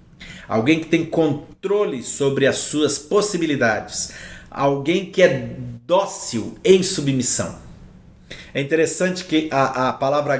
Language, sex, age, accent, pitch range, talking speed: Portuguese, male, 50-69, Brazilian, 135-175 Hz, 115 wpm